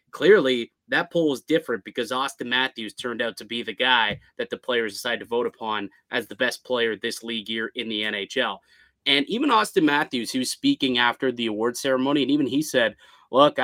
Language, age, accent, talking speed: English, 20-39, American, 200 wpm